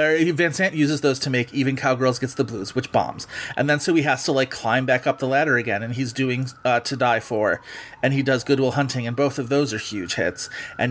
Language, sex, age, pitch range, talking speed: English, male, 30-49, 120-140 Hz, 250 wpm